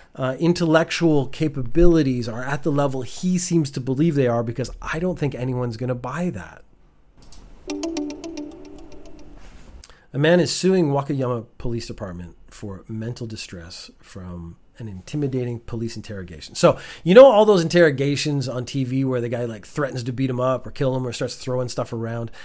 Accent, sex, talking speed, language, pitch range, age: American, male, 165 wpm, English, 120-160 Hz, 30-49